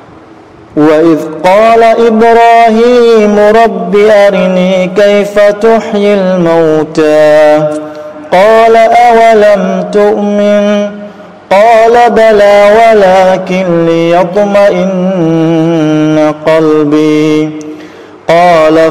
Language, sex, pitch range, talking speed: Vietnamese, male, 155-205 Hz, 55 wpm